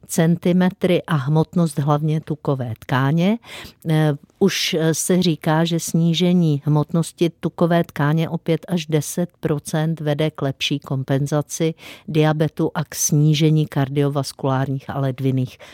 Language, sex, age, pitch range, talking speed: Czech, female, 50-69, 150-180 Hz, 105 wpm